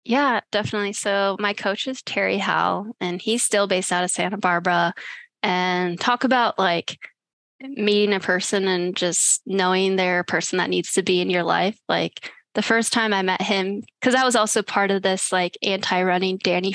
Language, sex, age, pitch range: English, female, 10-29, 185-220 Hz